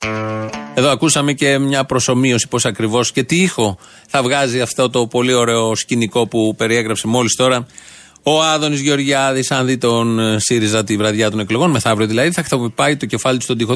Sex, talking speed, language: male, 180 wpm, Greek